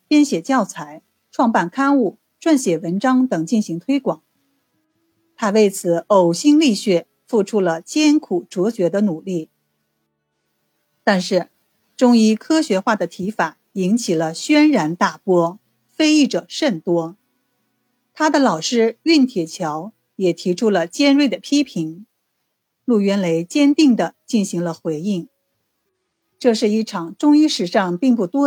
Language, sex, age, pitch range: Chinese, female, 50-69, 175-260 Hz